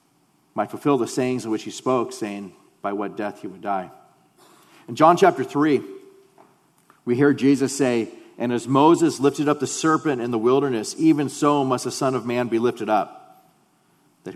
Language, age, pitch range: English, 40-59, 115-145 Hz